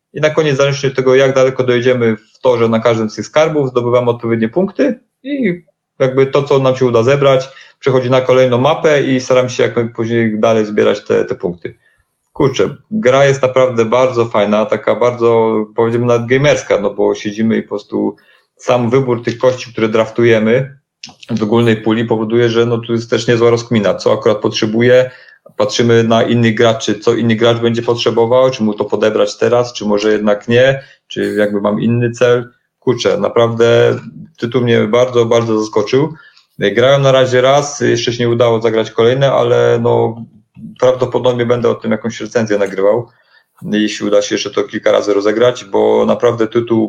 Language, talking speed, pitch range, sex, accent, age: Polish, 180 wpm, 110-130 Hz, male, native, 30-49